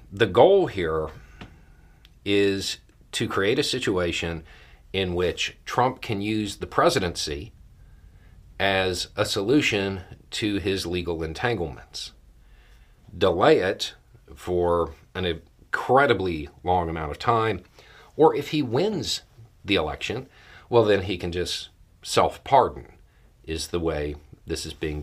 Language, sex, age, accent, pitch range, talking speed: English, male, 40-59, American, 80-105 Hz, 115 wpm